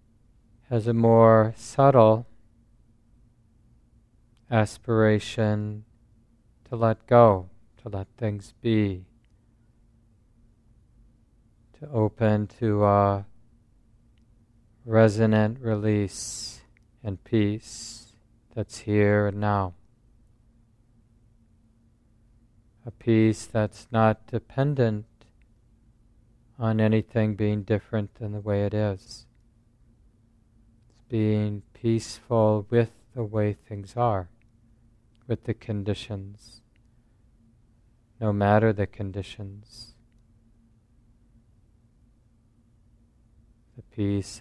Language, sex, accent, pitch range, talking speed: English, male, American, 110-115 Hz, 75 wpm